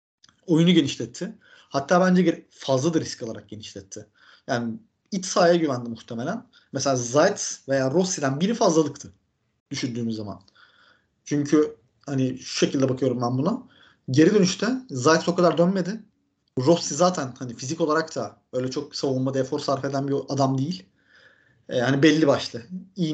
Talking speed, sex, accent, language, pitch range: 135 wpm, male, native, Turkish, 135-200 Hz